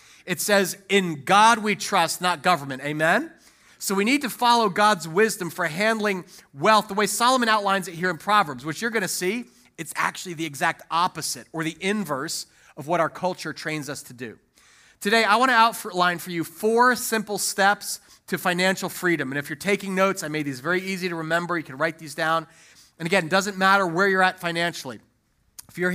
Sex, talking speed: male, 200 wpm